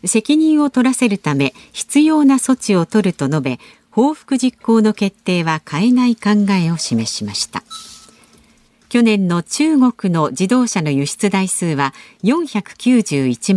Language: Japanese